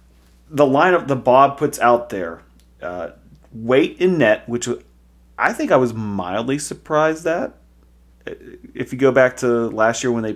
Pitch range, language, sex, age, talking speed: 95-130 Hz, English, male, 30-49, 160 wpm